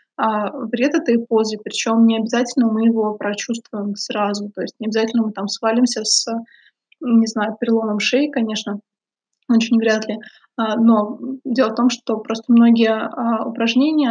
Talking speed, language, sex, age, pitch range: 145 wpm, Russian, female, 20-39, 220-240 Hz